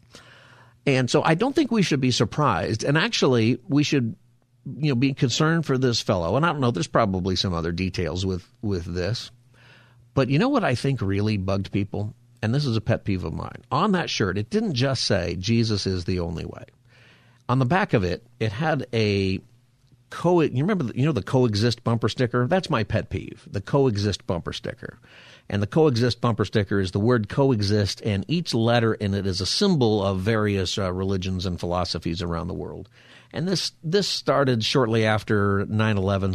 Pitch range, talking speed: 100-130 Hz, 195 wpm